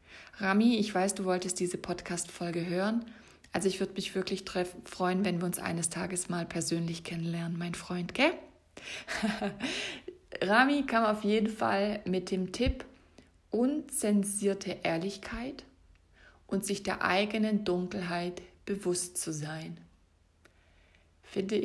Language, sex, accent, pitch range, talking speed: German, female, German, 170-205 Hz, 120 wpm